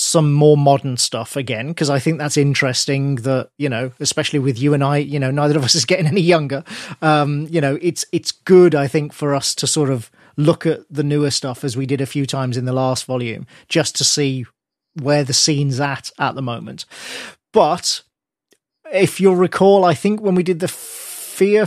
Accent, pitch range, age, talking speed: British, 135-170 Hz, 40-59, 220 wpm